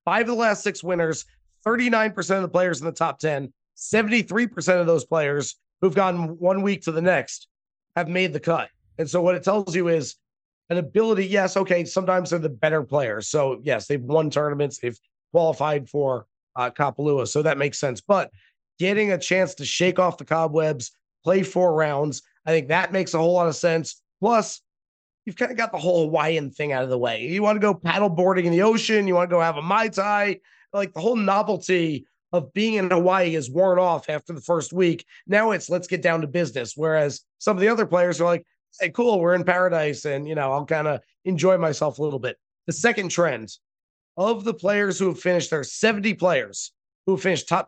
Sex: male